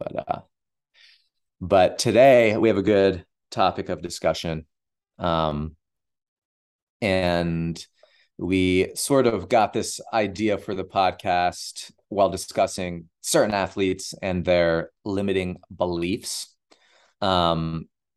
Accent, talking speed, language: American, 100 wpm, English